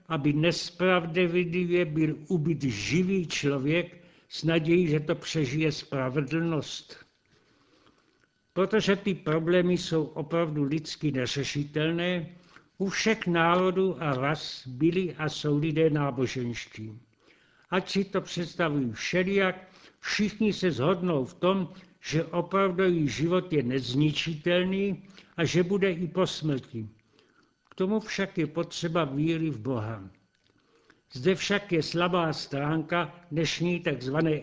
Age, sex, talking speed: 60-79, male, 110 wpm